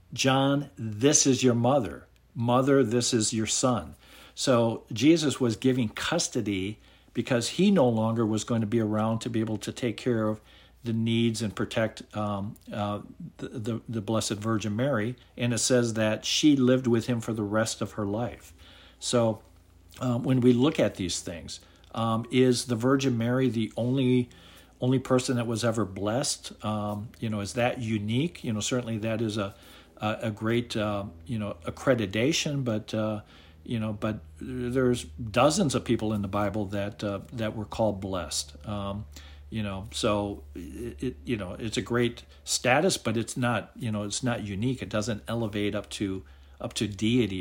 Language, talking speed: English, 180 wpm